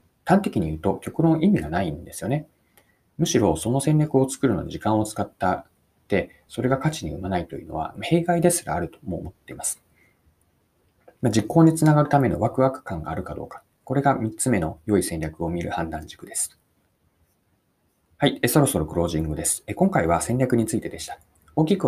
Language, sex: Japanese, male